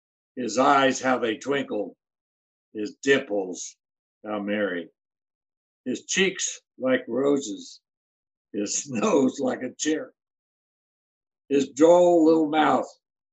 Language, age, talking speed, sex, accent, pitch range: English, 60-79, 100 wpm, male, American, 105-155 Hz